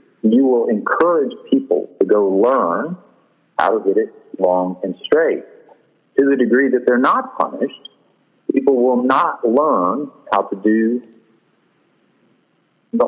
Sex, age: male, 50-69